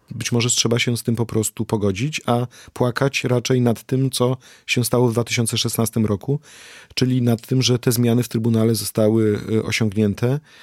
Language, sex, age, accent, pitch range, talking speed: Polish, male, 40-59, native, 105-120 Hz, 170 wpm